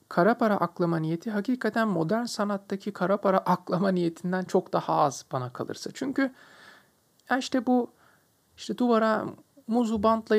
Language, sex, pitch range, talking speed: Turkish, male, 155-215 Hz, 135 wpm